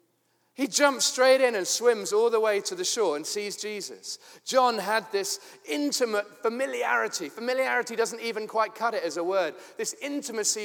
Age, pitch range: 30-49, 190-285 Hz